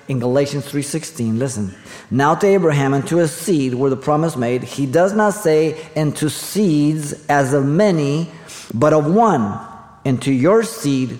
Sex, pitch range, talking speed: male, 115-150 Hz, 170 wpm